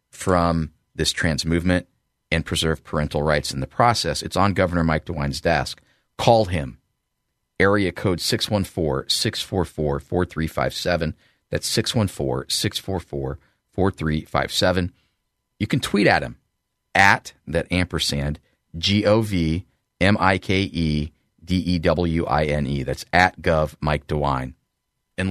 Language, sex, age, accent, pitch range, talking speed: English, male, 40-59, American, 80-105 Hz, 90 wpm